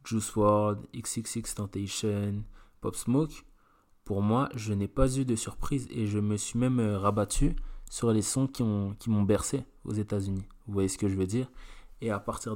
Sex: male